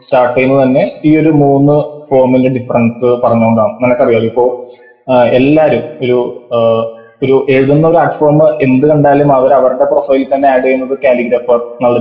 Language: Malayalam